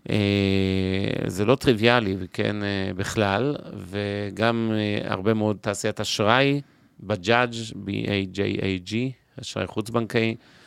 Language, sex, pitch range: Hebrew, male, 100-115 Hz